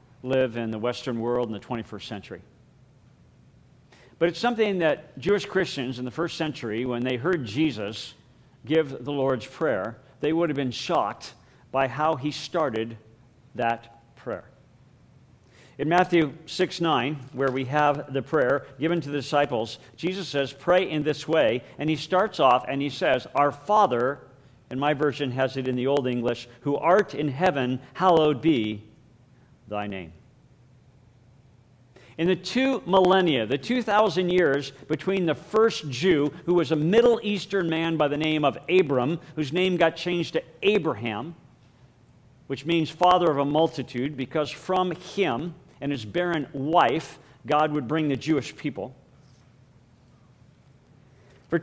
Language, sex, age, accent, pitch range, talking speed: English, male, 50-69, American, 130-170 Hz, 150 wpm